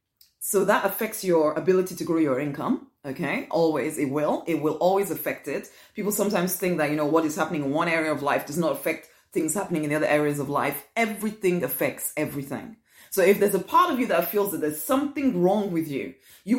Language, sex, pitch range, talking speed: English, female, 170-260 Hz, 225 wpm